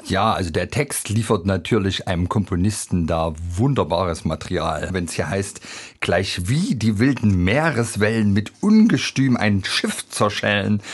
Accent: German